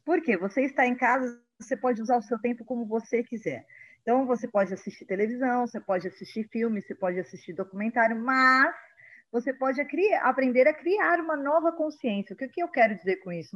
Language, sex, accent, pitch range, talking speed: Portuguese, female, Brazilian, 220-280 Hz, 205 wpm